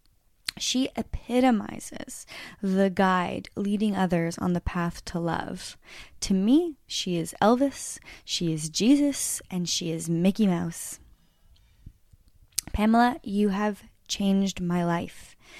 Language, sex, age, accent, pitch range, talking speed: English, female, 10-29, American, 175-210 Hz, 115 wpm